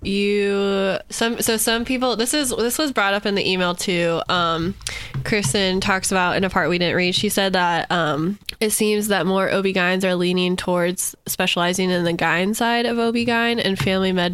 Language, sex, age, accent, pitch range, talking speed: English, female, 10-29, American, 175-205 Hz, 195 wpm